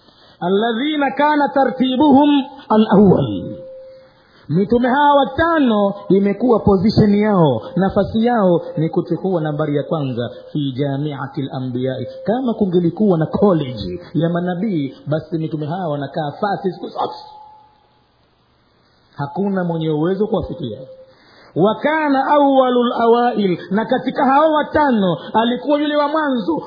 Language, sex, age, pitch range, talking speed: Swahili, male, 50-69, 135-215 Hz, 105 wpm